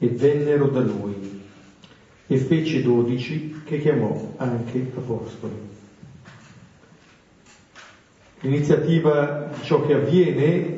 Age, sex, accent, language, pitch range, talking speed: 50-69, male, native, Italian, 120-145 Hz, 85 wpm